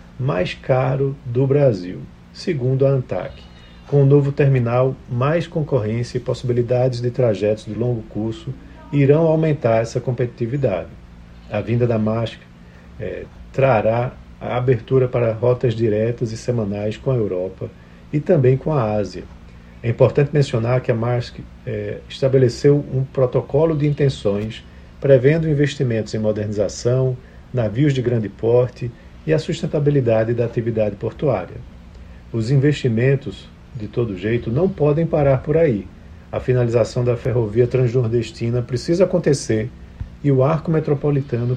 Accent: Brazilian